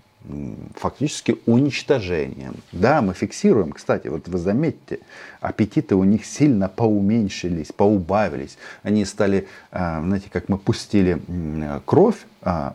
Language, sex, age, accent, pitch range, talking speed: Russian, male, 40-59, native, 90-115 Hz, 105 wpm